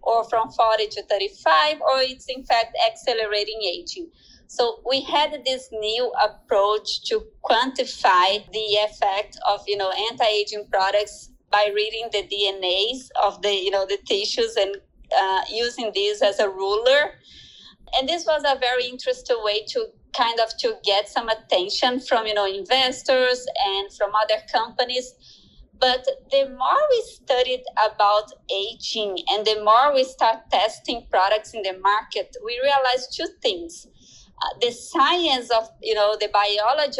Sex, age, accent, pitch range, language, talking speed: female, 20-39, Brazilian, 205-280 Hz, English, 150 wpm